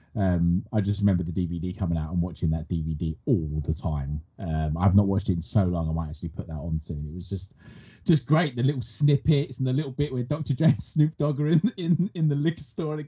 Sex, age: male, 20-39